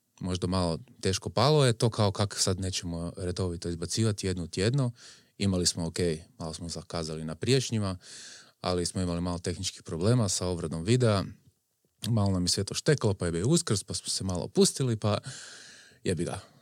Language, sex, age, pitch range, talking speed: Croatian, male, 30-49, 95-120 Hz, 175 wpm